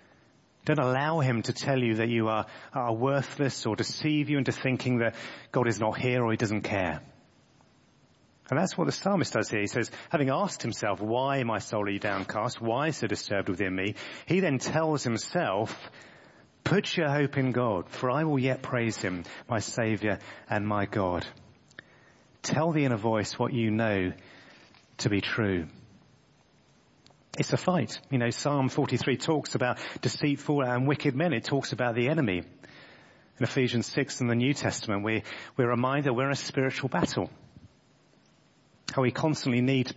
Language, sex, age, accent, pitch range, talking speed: English, male, 30-49, British, 105-135 Hz, 175 wpm